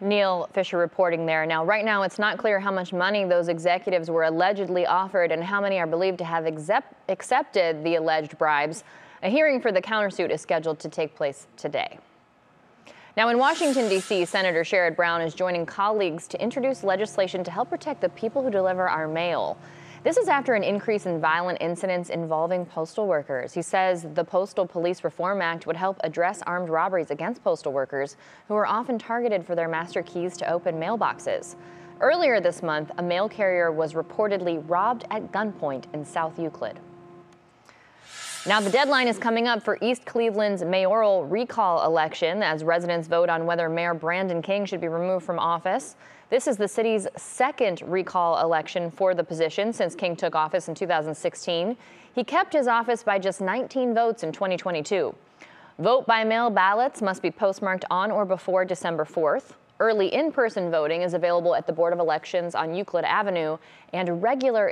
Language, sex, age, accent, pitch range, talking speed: English, female, 20-39, American, 170-210 Hz, 175 wpm